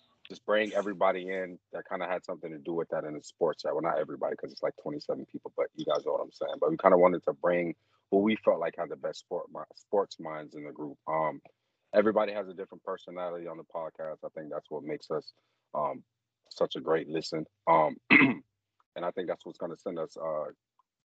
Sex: male